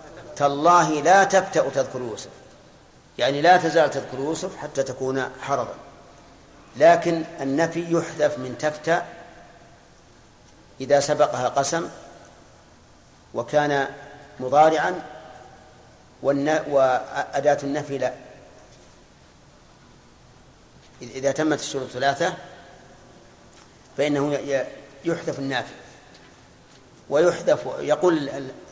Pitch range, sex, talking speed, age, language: 135-160 Hz, male, 75 wpm, 50-69, Arabic